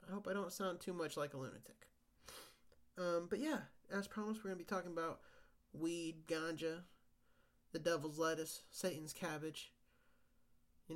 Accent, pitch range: American, 145-185 Hz